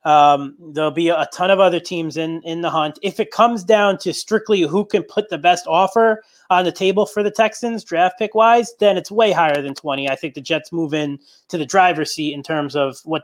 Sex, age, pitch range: male, 30-49, 150-185 Hz